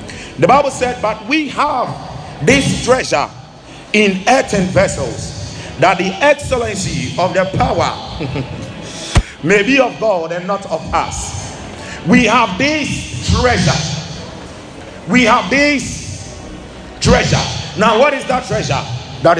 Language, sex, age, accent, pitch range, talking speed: English, male, 50-69, Nigerian, 155-215 Hz, 120 wpm